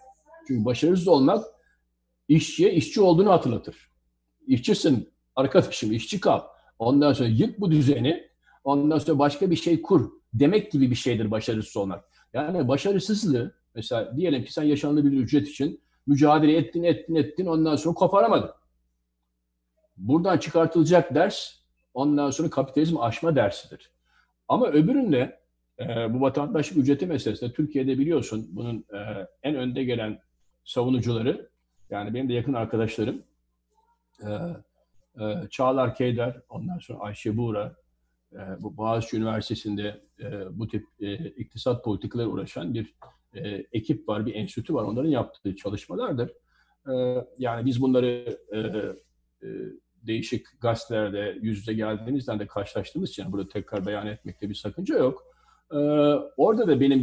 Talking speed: 135 wpm